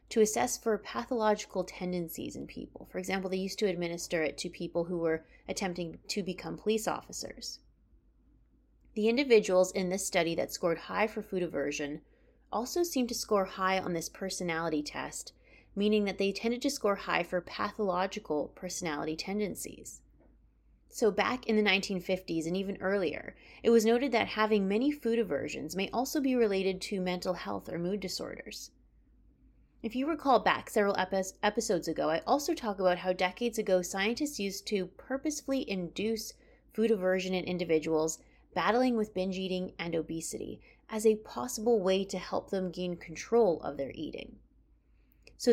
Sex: female